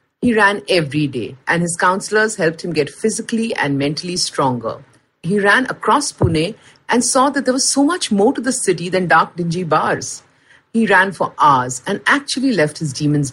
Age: 50-69